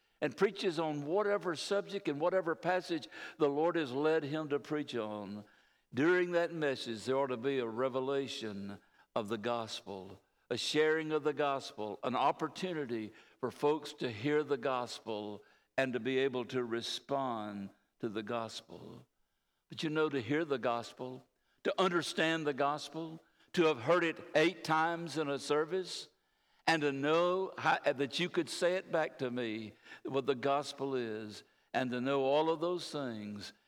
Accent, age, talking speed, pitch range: American, 60-79, 165 wpm, 105-155 Hz